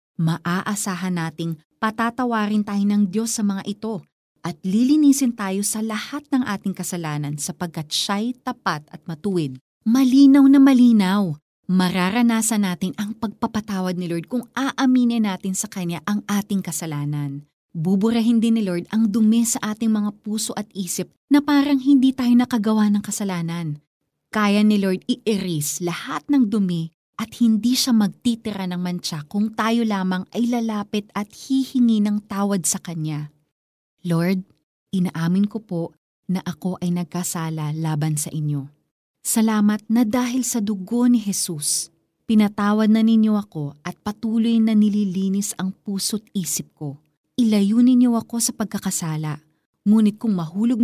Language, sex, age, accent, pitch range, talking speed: Filipino, female, 30-49, native, 175-225 Hz, 140 wpm